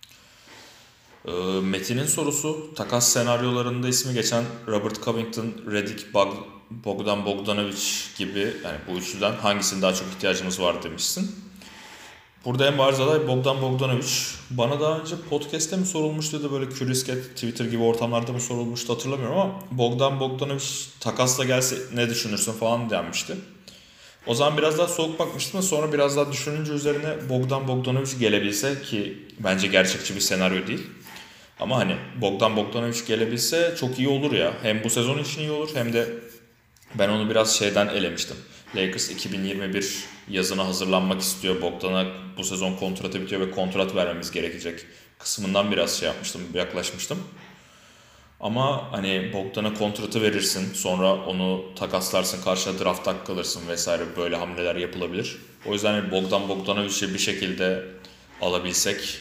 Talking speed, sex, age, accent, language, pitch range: 140 wpm, male, 30-49, native, Turkish, 95-130 Hz